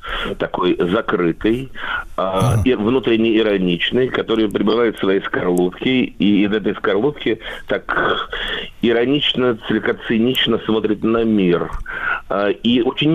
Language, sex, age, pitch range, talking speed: Russian, male, 50-69, 110-145 Hz, 95 wpm